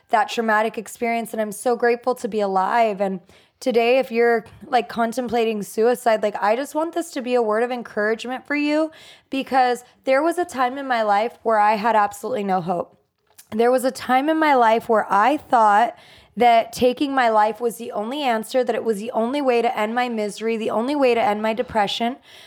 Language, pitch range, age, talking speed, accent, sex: English, 220-260 Hz, 20-39, 210 wpm, American, female